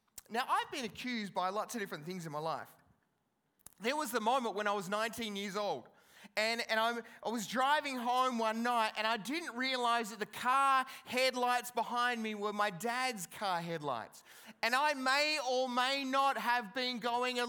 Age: 20-39